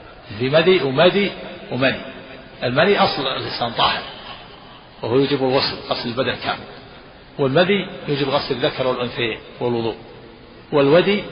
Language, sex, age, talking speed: Arabic, male, 50-69, 100 wpm